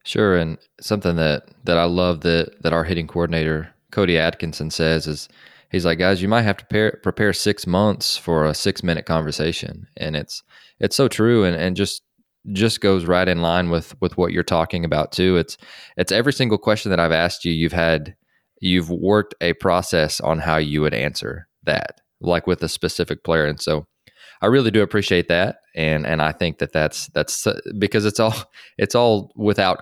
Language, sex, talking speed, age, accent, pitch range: English, male, 200 wpm, 20-39, American, 80-95 Hz